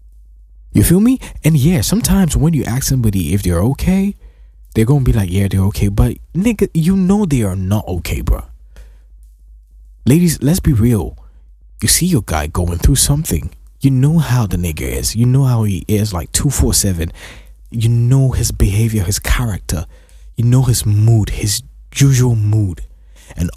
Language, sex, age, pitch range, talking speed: English, male, 20-39, 85-135 Hz, 170 wpm